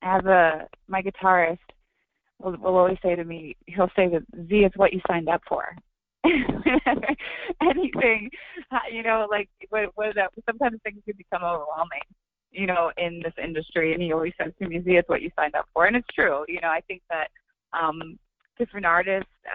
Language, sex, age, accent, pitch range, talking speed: English, female, 20-39, American, 160-205 Hz, 185 wpm